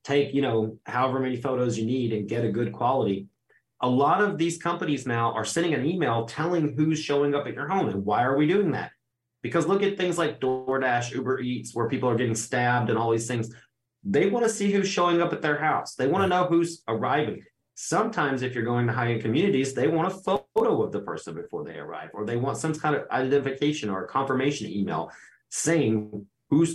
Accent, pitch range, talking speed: American, 115-150 Hz, 220 wpm